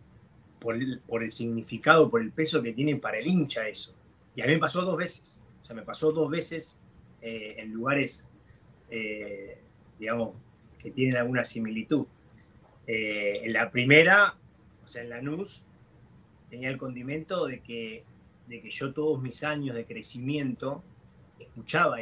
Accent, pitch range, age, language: Argentinian, 110-135 Hz, 20-39, English